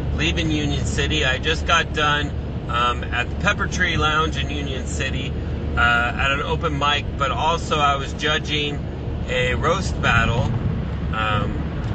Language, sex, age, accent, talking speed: English, male, 30-49, American, 150 wpm